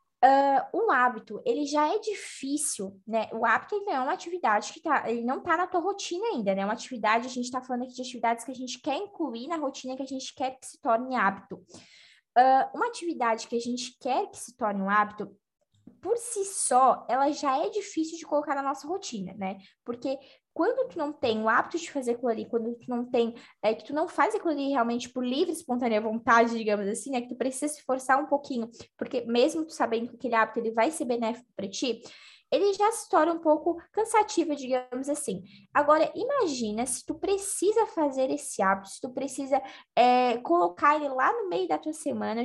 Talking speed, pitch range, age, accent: 210 wpm, 235-315 Hz, 10-29, Brazilian